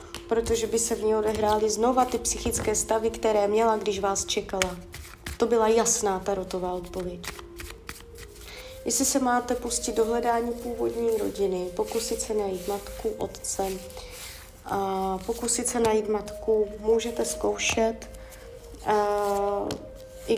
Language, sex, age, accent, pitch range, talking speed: Czech, female, 20-39, native, 175-235 Hz, 120 wpm